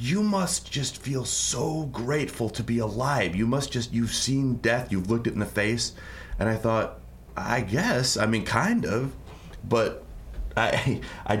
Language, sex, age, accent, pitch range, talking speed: English, male, 30-49, American, 85-110 Hz, 175 wpm